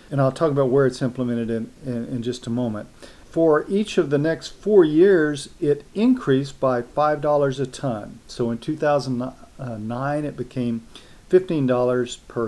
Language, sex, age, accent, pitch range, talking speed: English, male, 40-59, American, 120-145 Hz, 160 wpm